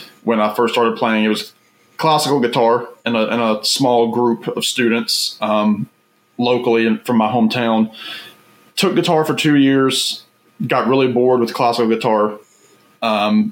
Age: 20-39